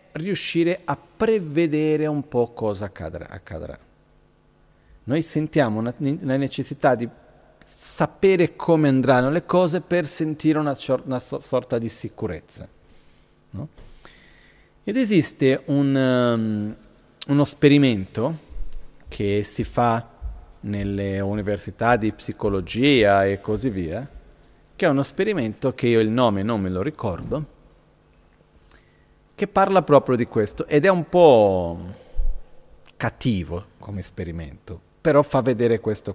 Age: 40-59